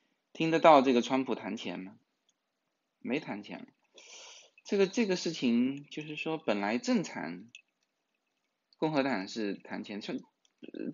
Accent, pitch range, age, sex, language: native, 110-160 Hz, 20-39, male, Chinese